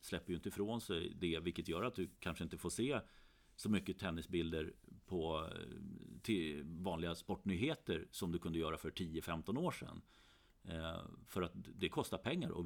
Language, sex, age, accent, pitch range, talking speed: Swedish, male, 40-59, native, 80-95 Hz, 165 wpm